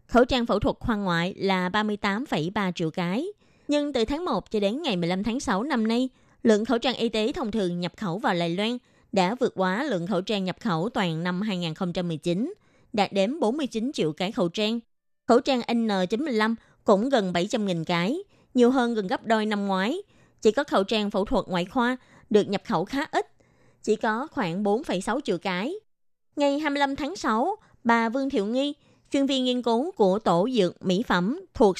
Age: 20-39